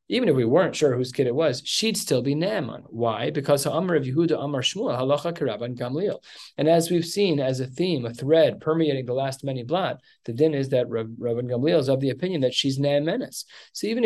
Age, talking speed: 20-39, 220 wpm